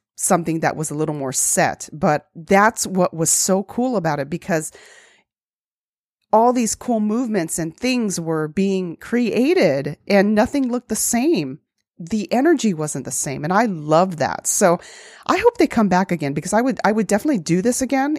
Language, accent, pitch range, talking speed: English, American, 160-215 Hz, 180 wpm